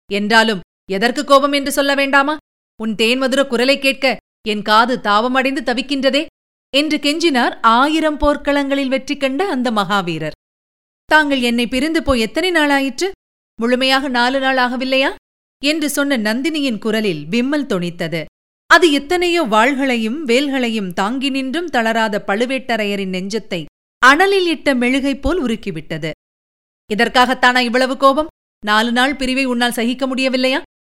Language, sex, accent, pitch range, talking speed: Tamil, female, native, 220-275 Hz, 120 wpm